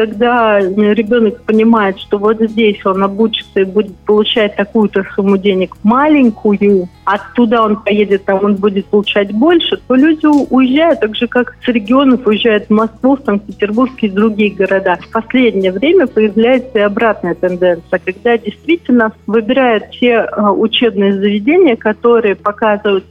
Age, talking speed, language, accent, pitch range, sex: 40-59, 145 wpm, Russian, native, 205-245 Hz, female